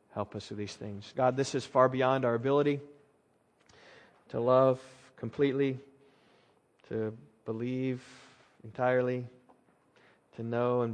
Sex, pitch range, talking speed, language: male, 110-120 Hz, 115 wpm, English